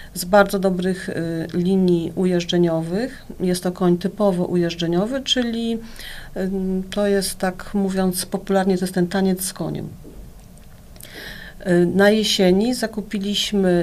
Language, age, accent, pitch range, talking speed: Polish, 40-59, native, 170-190 Hz, 120 wpm